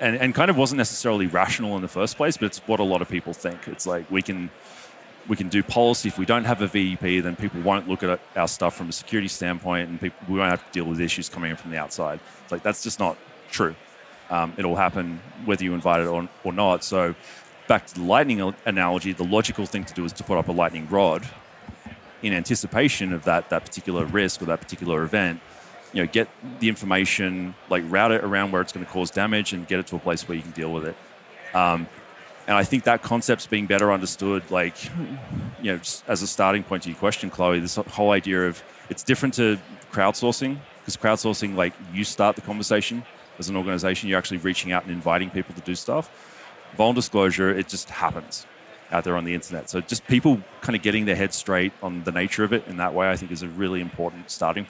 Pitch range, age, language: 90-105 Hz, 30-49, English